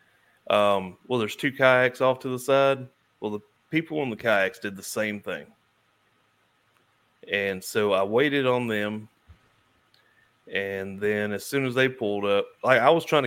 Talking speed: 165 wpm